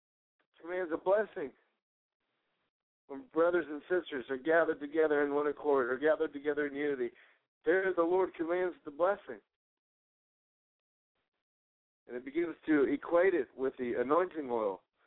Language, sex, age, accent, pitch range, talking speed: English, male, 50-69, American, 135-170 Hz, 135 wpm